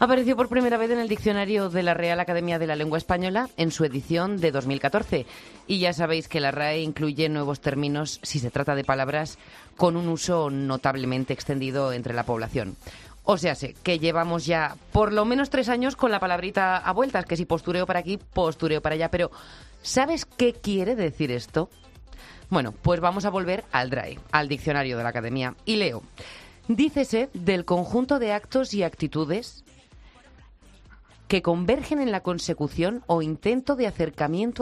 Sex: female